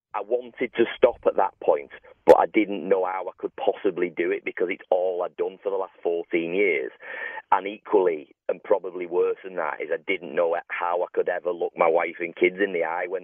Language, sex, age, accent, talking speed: English, male, 30-49, British, 230 wpm